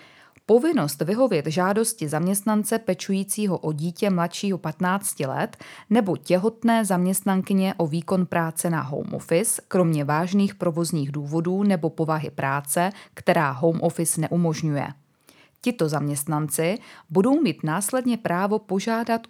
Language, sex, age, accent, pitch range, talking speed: Czech, female, 20-39, native, 160-205 Hz, 115 wpm